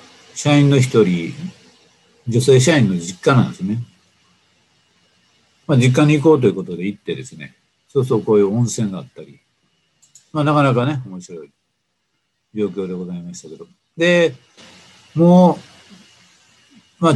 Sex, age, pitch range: male, 50-69, 100-135 Hz